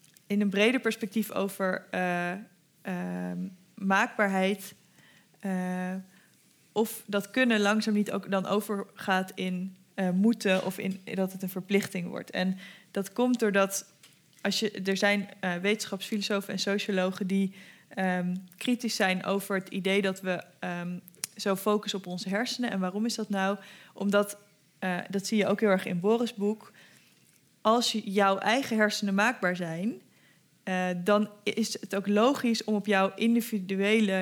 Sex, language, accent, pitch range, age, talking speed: female, Dutch, Dutch, 185-210 Hz, 20-39, 150 wpm